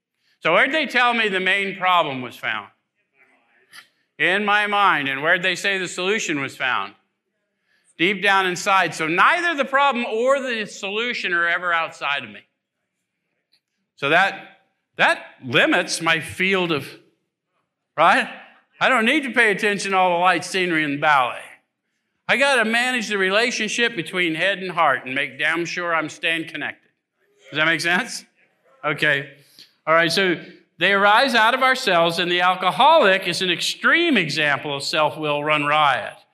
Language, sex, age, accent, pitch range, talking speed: English, male, 50-69, American, 155-210 Hz, 165 wpm